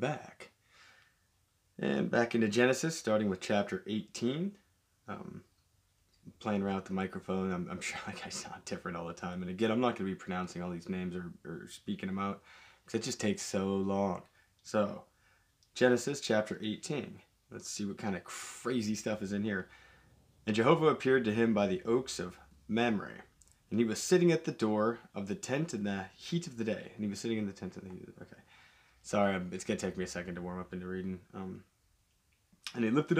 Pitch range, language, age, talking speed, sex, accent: 95-125 Hz, English, 20-39, 215 wpm, male, American